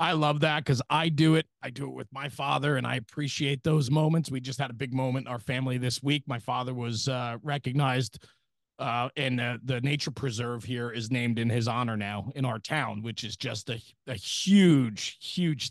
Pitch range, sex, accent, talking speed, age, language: 125-150 Hz, male, American, 215 wpm, 30-49, English